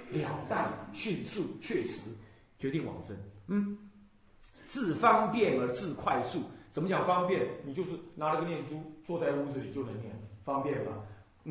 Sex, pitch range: male, 120-190 Hz